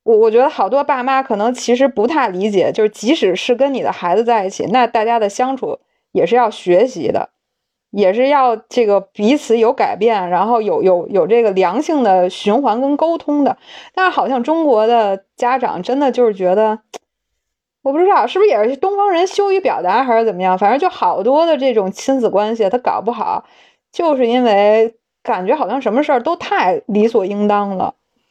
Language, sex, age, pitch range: Chinese, female, 20-39, 205-280 Hz